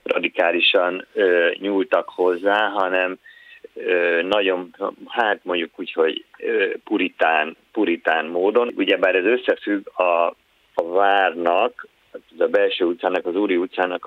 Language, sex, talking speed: Hungarian, male, 115 wpm